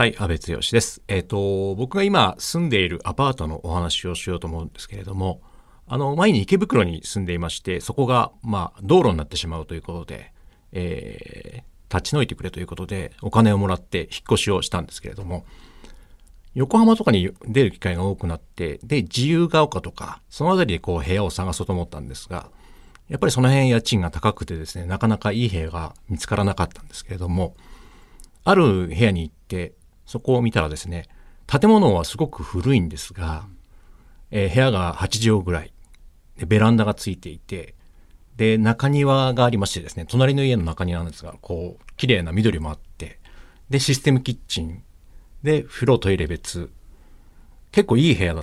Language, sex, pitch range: Japanese, male, 85-120 Hz